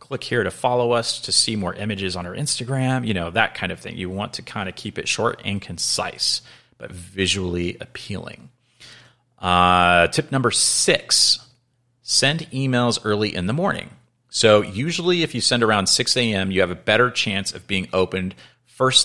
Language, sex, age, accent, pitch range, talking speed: English, male, 30-49, American, 90-120 Hz, 185 wpm